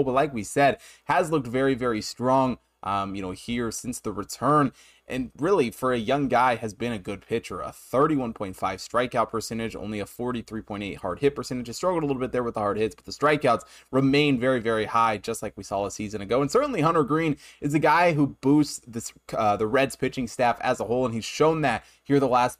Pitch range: 110-135 Hz